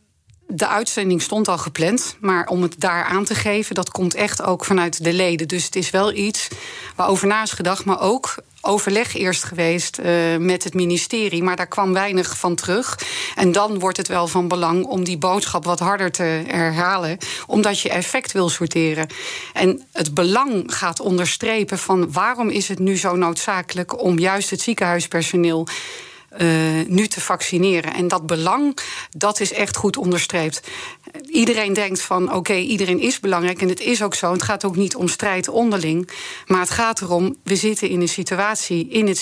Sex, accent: female, Dutch